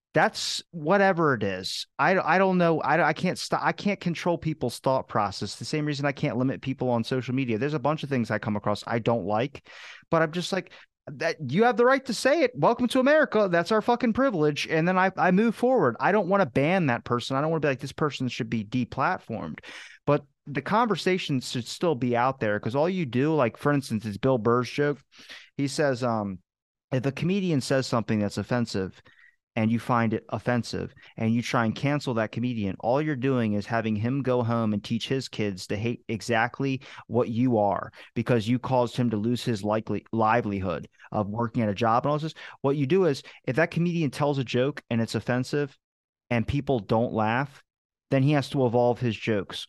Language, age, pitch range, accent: English, 30-49, 115-155 Hz, American